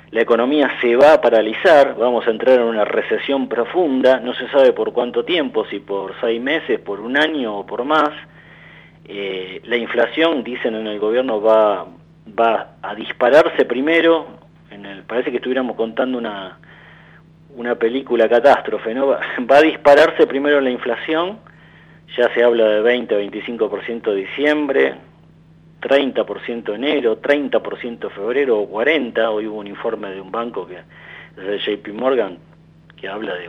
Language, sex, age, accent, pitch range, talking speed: Italian, male, 40-59, Argentinian, 110-155 Hz, 155 wpm